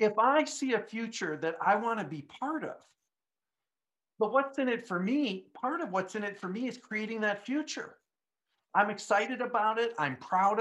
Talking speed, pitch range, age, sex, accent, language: 190 wpm, 175-225 Hz, 50-69, male, American, English